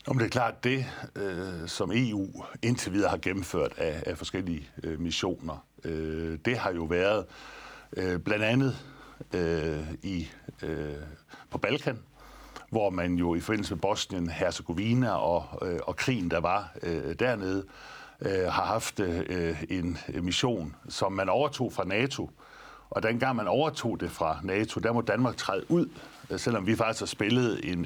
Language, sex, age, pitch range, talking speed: Danish, male, 60-79, 85-115 Hz, 130 wpm